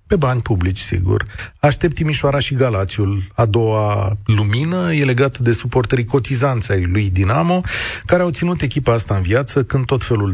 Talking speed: 160 wpm